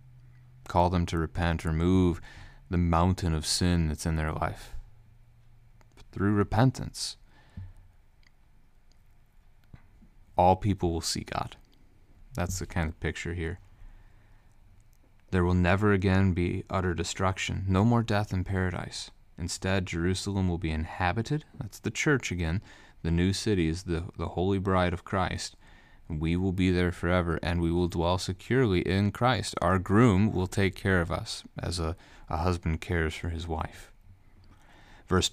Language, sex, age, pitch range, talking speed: English, male, 30-49, 85-100 Hz, 145 wpm